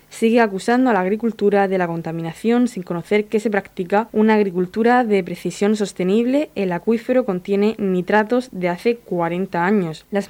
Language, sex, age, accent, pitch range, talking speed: Spanish, female, 20-39, Spanish, 185-215 Hz, 155 wpm